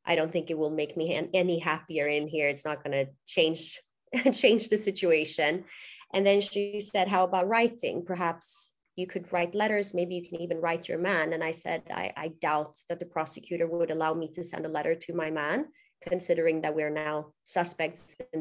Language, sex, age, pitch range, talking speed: English, female, 30-49, 165-210 Hz, 205 wpm